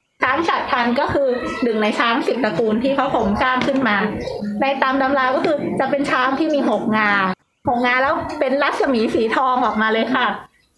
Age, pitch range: 20-39, 235-290 Hz